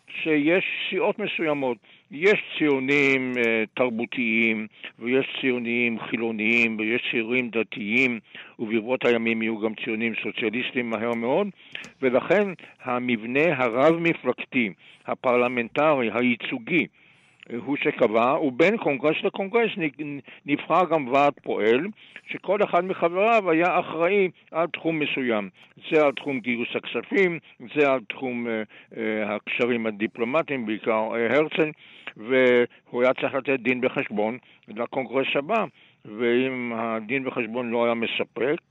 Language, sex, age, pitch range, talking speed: Hebrew, male, 60-79, 120-145 Hz, 110 wpm